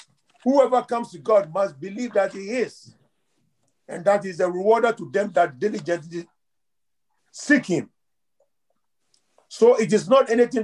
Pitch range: 180-225 Hz